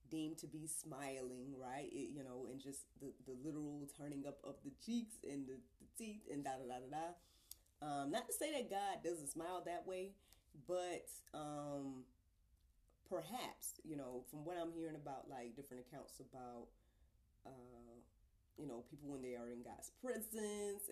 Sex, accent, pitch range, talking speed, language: female, American, 125-185 Hz, 175 wpm, English